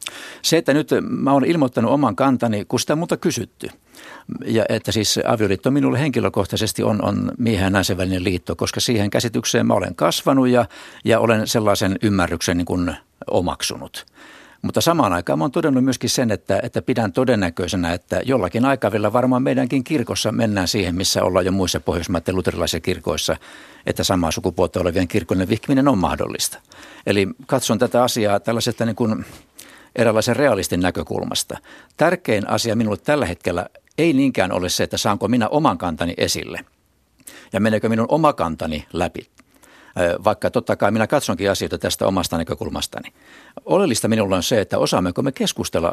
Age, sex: 60-79, male